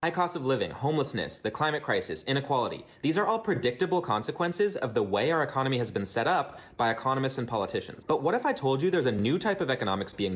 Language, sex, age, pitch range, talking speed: English, male, 30-49, 115-160 Hz, 230 wpm